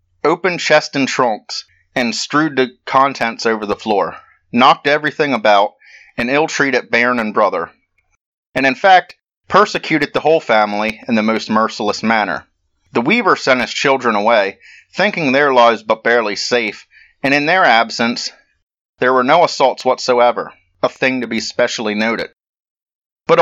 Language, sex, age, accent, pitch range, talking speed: English, male, 30-49, American, 110-135 Hz, 150 wpm